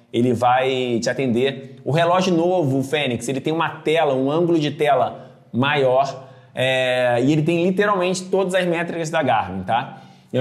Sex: male